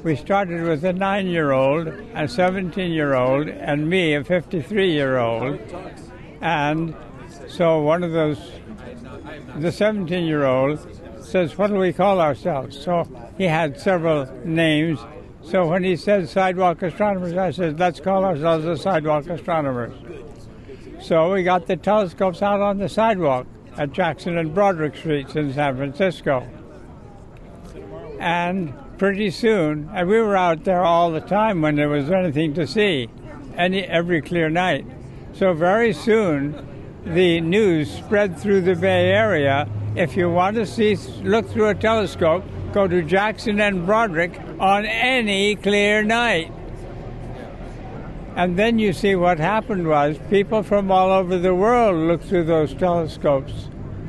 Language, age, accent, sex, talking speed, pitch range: English, 60-79, American, male, 140 wpm, 150-195 Hz